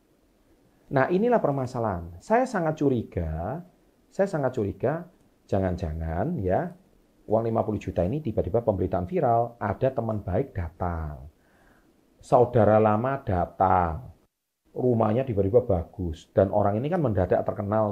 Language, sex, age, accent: Indonesian, male, 40-59, native